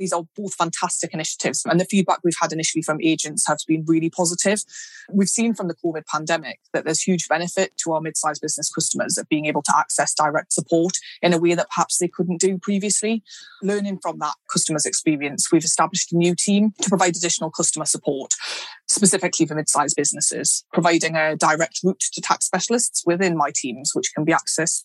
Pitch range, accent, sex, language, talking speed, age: 155-190 Hz, British, female, English, 195 wpm, 20-39